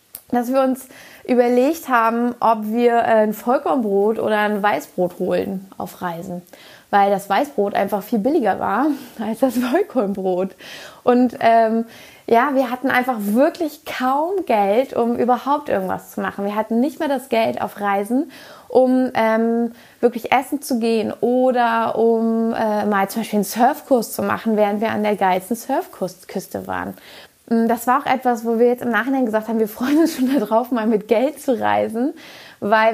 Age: 20-39